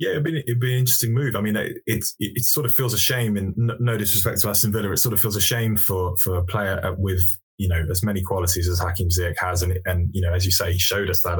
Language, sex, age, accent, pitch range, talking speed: English, male, 20-39, British, 90-100 Hz, 290 wpm